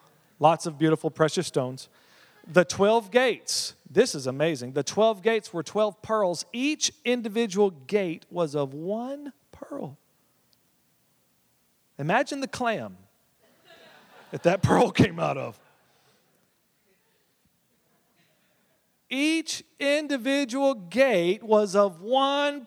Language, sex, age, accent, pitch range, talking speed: English, male, 40-59, American, 165-255 Hz, 105 wpm